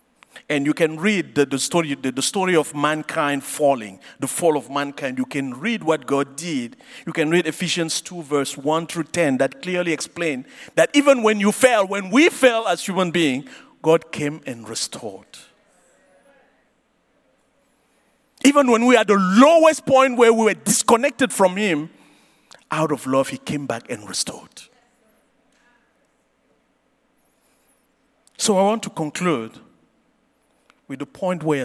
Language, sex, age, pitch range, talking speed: English, male, 50-69, 140-210 Hz, 155 wpm